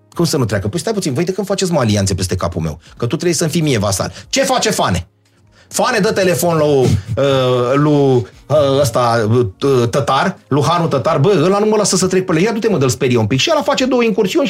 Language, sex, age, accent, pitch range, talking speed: Romanian, male, 30-49, native, 125-200 Hz, 245 wpm